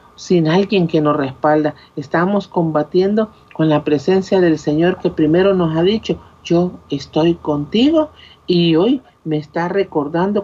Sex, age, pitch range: male, 50-69, 150-190 Hz